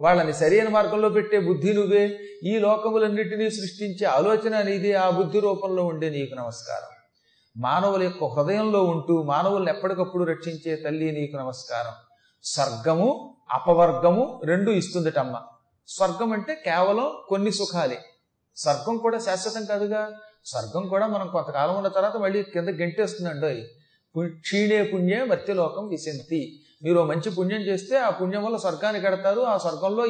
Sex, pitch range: male, 160-210 Hz